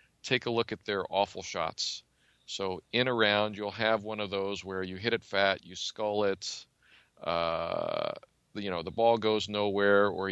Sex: male